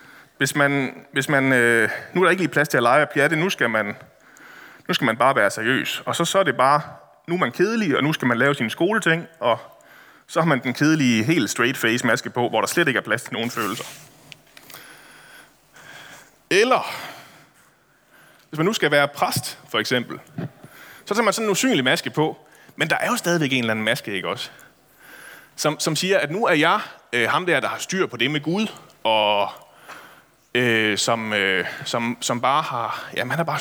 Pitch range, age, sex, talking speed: 120-180 Hz, 30-49, male, 205 wpm